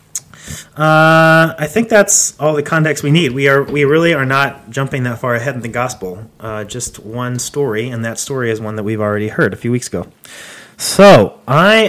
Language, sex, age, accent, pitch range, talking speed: English, male, 30-49, American, 115-145 Hz, 205 wpm